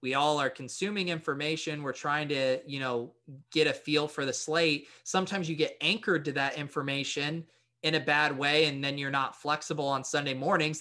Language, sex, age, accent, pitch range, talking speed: English, male, 20-39, American, 135-175 Hz, 195 wpm